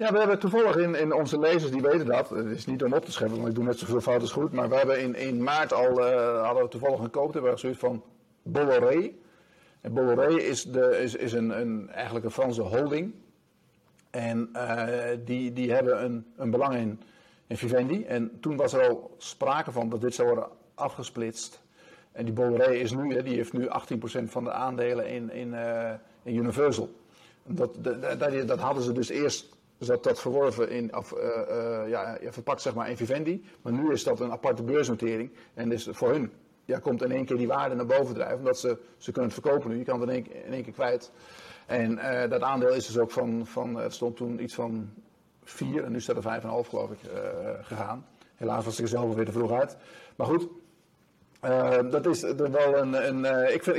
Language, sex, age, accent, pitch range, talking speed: Dutch, male, 50-69, Dutch, 120-155 Hz, 215 wpm